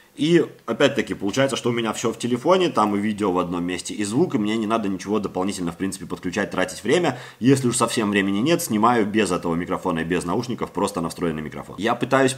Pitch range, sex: 95-120 Hz, male